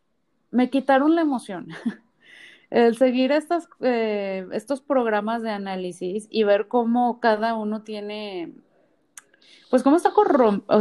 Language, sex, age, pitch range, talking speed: Spanish, female, 30-49, 205-255 Hz, 130 wpm